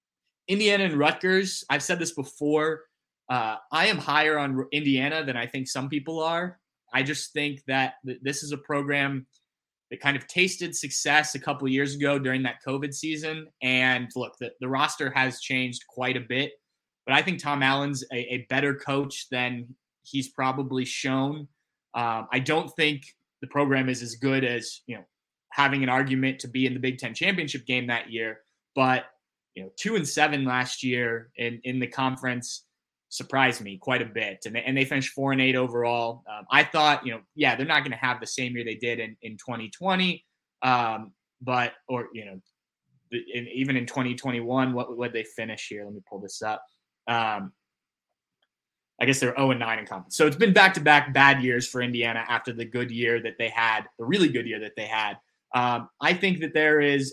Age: 20-39